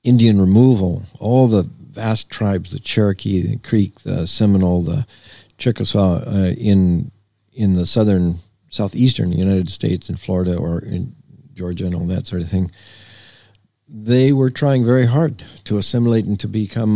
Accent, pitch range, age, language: American, 95-115 Hz, 50-69, English